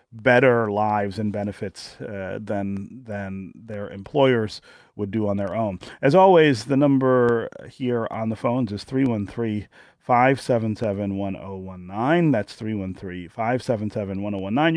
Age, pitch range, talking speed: 40-59, 105-130 Hz, 105 wpm